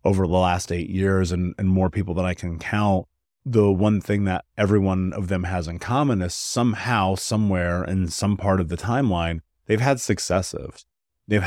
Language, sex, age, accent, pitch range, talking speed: English, male, 30-49, American, 90-115 Hz, 195 wpm